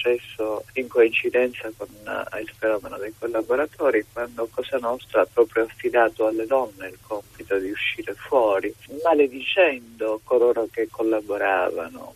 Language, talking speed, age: Italian, 125 wpm, 50-69